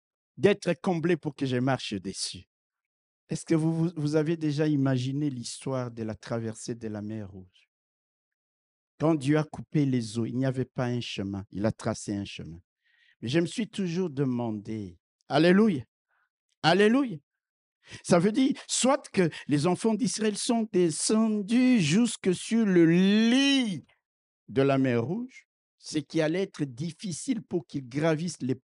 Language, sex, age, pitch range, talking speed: French, male, 60-79, 130-215 Hz, 155 wpm